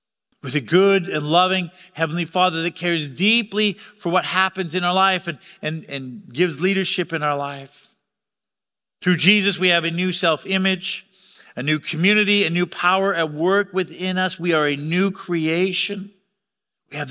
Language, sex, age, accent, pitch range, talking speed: Russian, male, 40-59, American, 160-205 Hz, 165 wpm